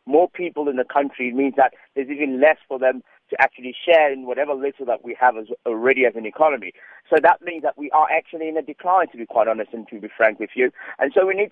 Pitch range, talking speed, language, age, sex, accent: 130-165 Hz, 255 wpm, English, 40-59, male, British